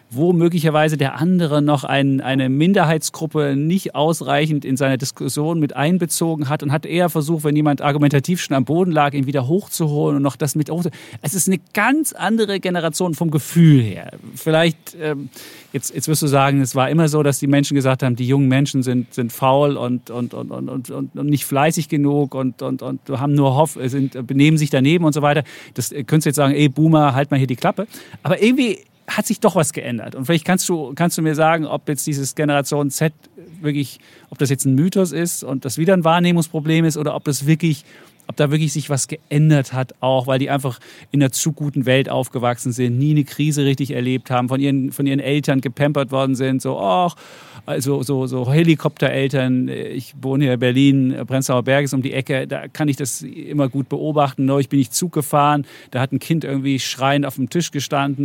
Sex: male